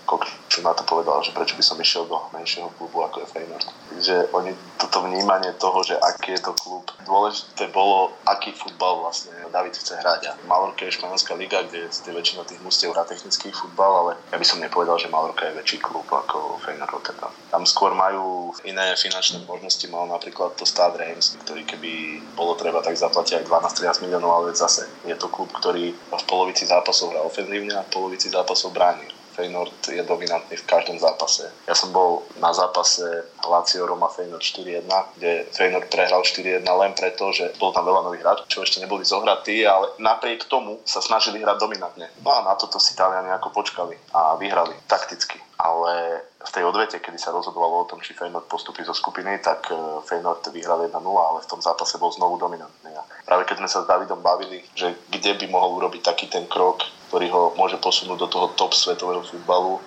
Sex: male